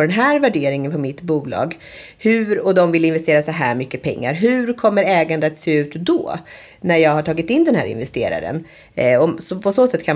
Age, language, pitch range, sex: 30-49, Swedish, 145-190 Hz, female